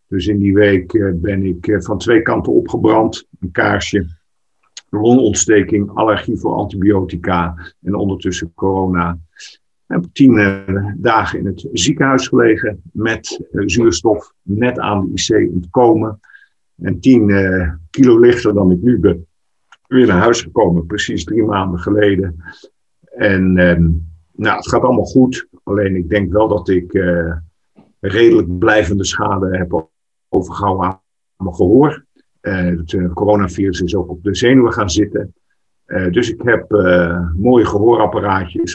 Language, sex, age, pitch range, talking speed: Dutch, male, 50-69, 90-105 Hz, 135 wpm